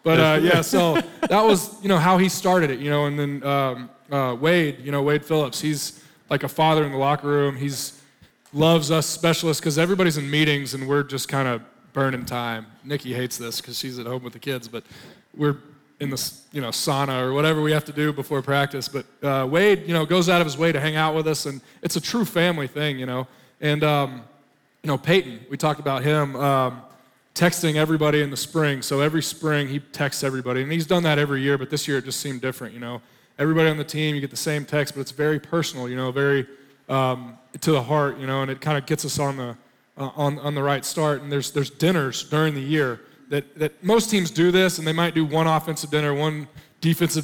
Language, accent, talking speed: English, American, 240 wpm